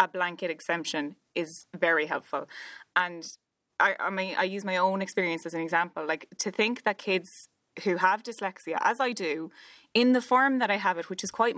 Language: English